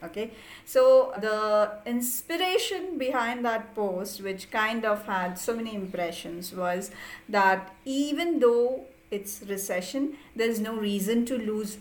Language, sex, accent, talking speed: English, female, Indian, 125 wpm